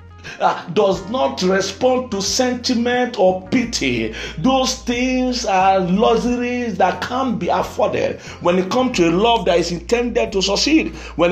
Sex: male